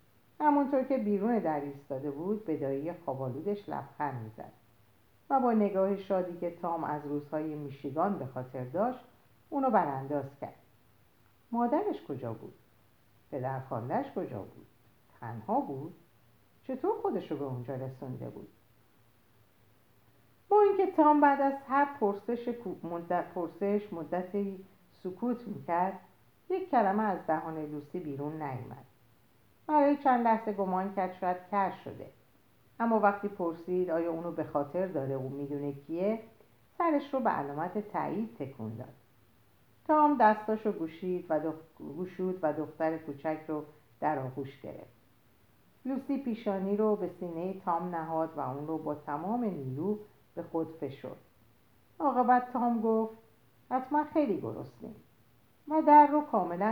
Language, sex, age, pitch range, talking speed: Persian, female, 50-69, 135-215 Hz, 135 wpm